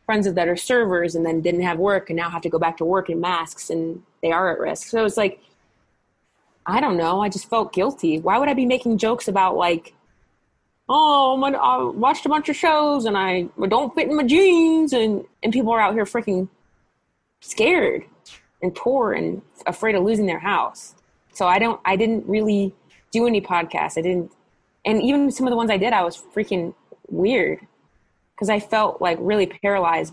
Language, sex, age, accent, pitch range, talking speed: English, female, 20-39, American, 185-275 Hz, 200 wpm